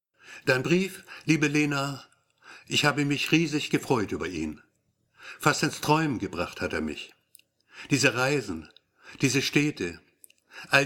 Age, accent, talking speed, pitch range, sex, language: 60-79, German, 125 wpm, 120-150 Hz, male, German